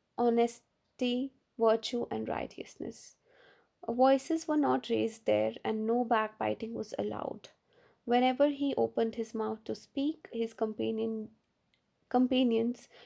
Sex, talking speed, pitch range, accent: female, 110 wpm, 225-260 Hz, Indian